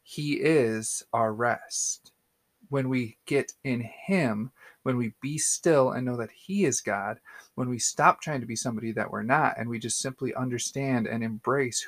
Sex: male